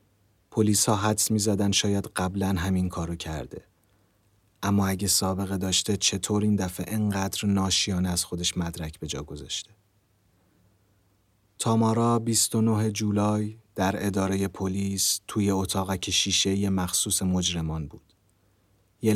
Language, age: Persian, 30-49